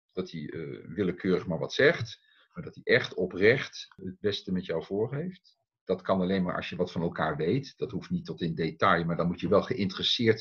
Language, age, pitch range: Dutch, 50-69, 95-125 Hz